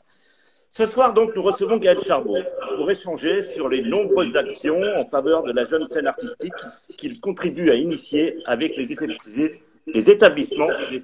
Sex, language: male, French